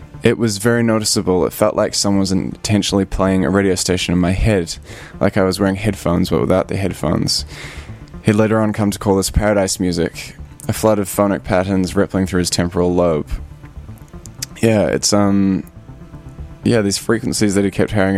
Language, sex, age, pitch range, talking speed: English, male, 10-29, 95-110 Hz, 180 wpm